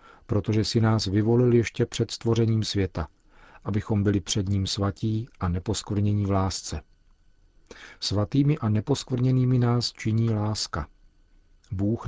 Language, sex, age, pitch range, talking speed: Czech, male, 40-59, 95-110 Hz, 120 wpm